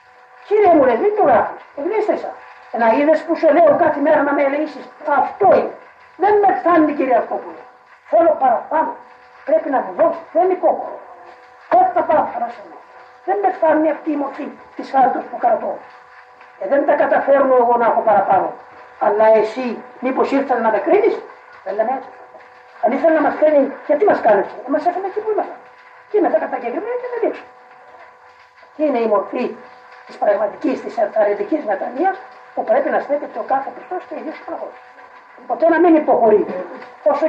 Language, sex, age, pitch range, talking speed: Greek, female, 40-59, 255-335 Hz, 125 wpm